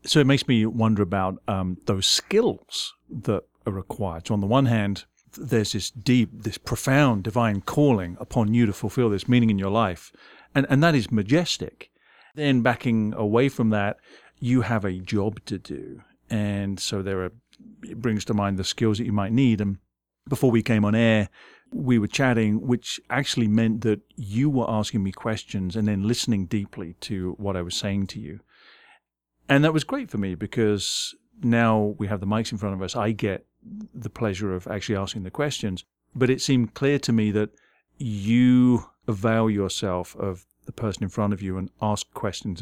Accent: British